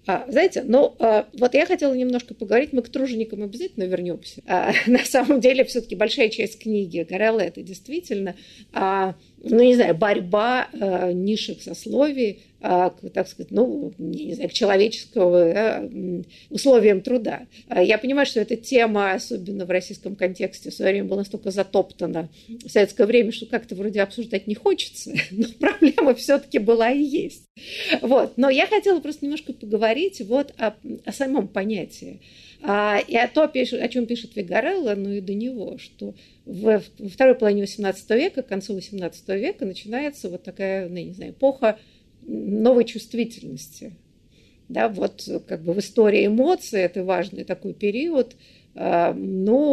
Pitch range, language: 190-250 Hz, Russian